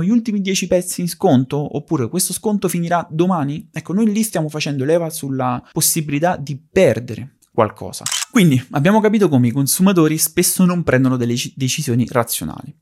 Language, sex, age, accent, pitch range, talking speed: Italian, male, 30-49, native, 115-165 Hz, 160 wpm